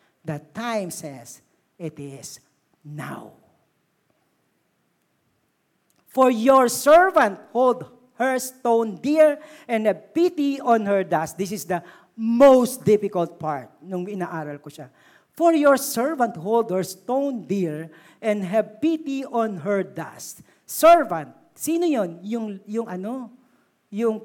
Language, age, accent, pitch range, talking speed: Filipino, 50-69, native, 210-300 Hz, 120 wpm